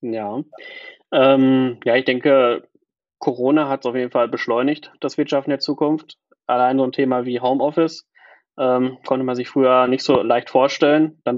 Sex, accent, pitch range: male, German, 125-150 Hz